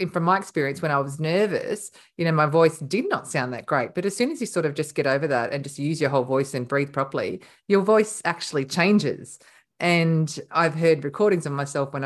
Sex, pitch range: female, 145-180 Hz